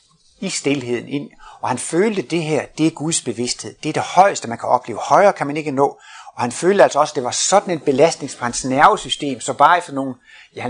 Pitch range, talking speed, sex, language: 135-180 Hz, 245 wpm, male, Danish